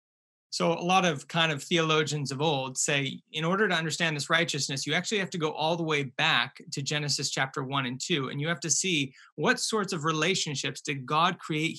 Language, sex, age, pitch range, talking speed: English, male, 30-49, 135-170 Hz, 220 wpm